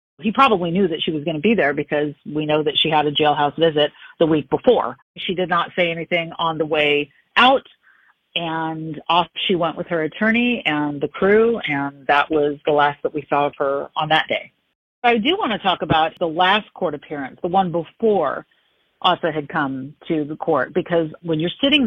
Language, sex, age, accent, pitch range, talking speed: English, female, 40-59, American, 150-175 Hz, 210 wpm